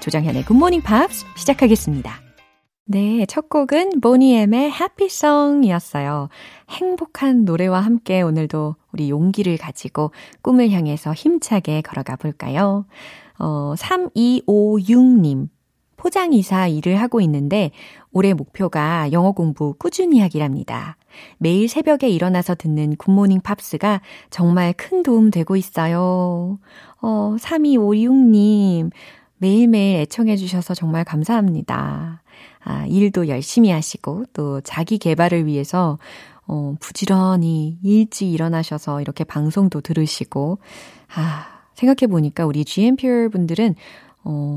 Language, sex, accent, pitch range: Korean, female, native, 155-230 Hz